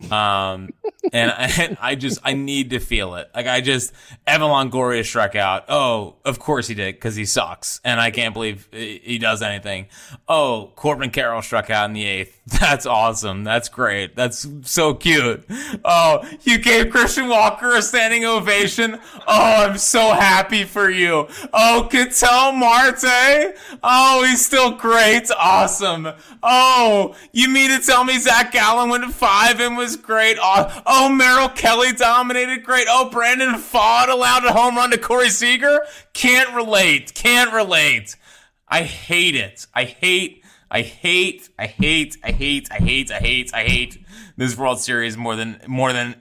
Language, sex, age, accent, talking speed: English, male, 20-39, American, 165 wpm